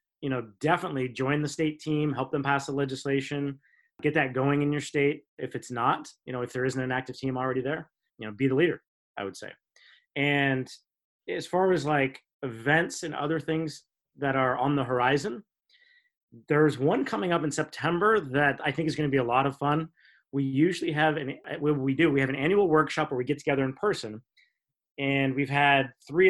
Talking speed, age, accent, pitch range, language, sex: 205 wpm, 30-49, American, 130-155 Hz, English, male